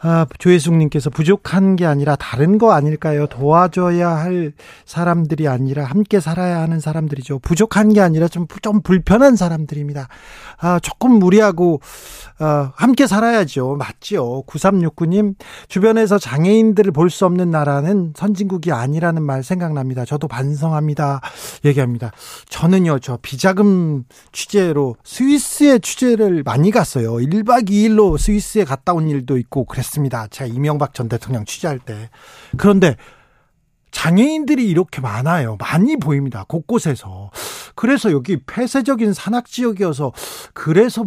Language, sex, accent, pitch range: Korean, male, native, 145-210 Hz